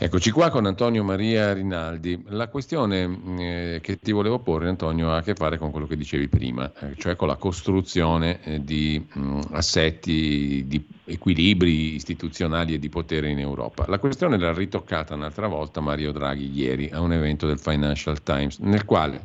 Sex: male